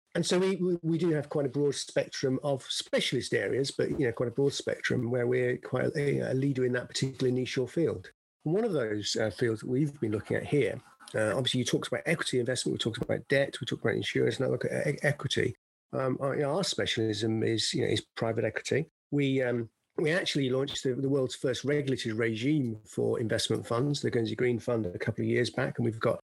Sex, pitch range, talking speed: male, 115-135 Hz, 230 wpm